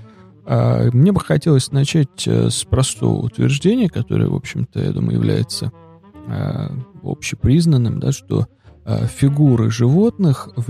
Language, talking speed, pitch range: Russian, 105 wpm, 110-140 Hz